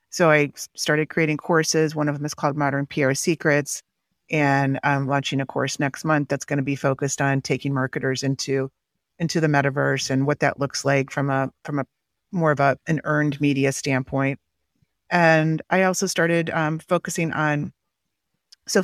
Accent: American